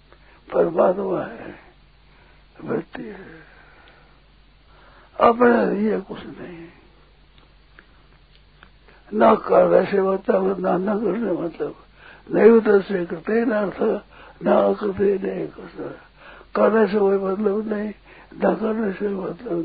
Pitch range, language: 190-220 Hz, Hindi